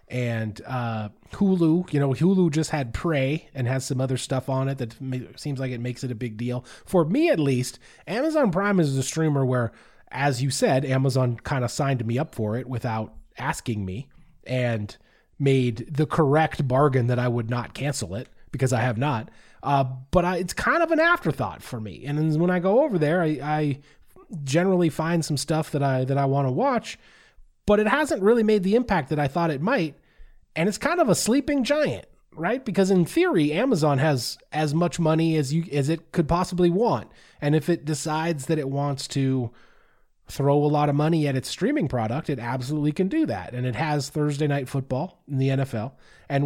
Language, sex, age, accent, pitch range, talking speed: English, male, 30-49, American, 125-160 Hz, 205 wpm